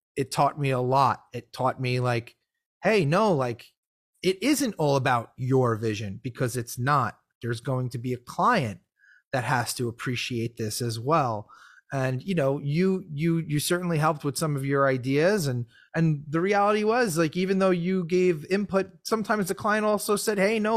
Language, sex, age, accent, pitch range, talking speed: English, male, 30-49, American, 120-160 Hz, 190 wpm